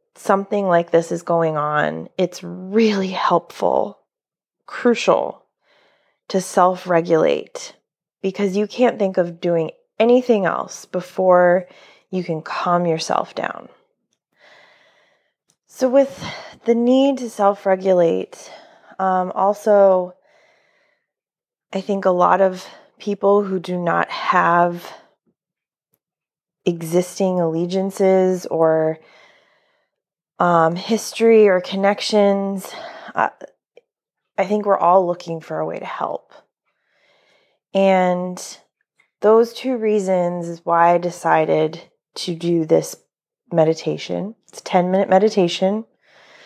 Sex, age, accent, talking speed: female, 20-39, American, 100 wpm